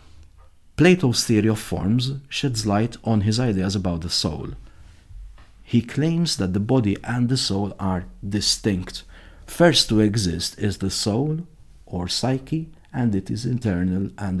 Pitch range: 95-120 Hz